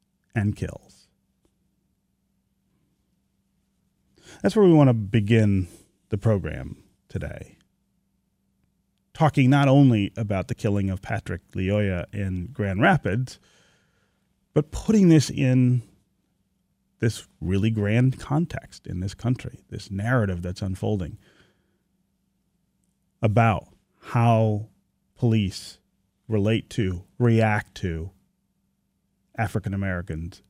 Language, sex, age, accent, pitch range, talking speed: English, male, 40-59, American, 95-130 Hz, 90 wpm